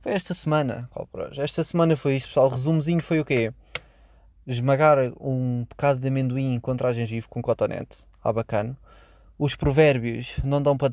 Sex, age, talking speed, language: male, 20-39, 160 wpm, Portuguese